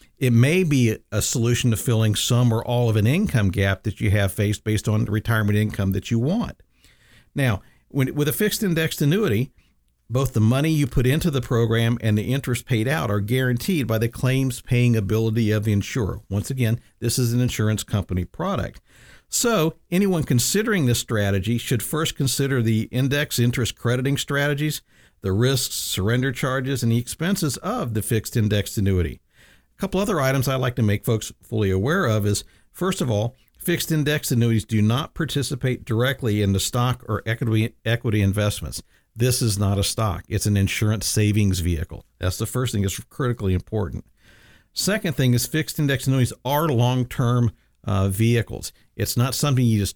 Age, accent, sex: 50-69, American, male